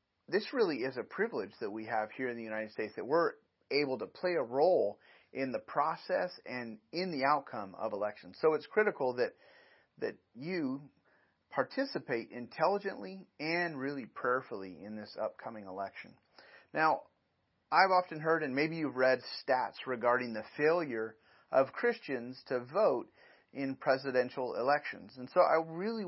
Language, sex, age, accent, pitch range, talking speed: English, male, 30-49, American, 110-145 Hz, 155 wpm